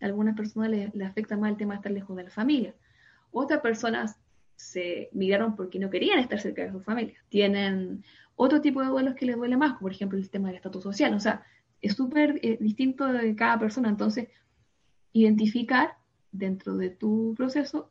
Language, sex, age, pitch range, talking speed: Spanish, female, 10-29, 205-260 Hz, 195 wpm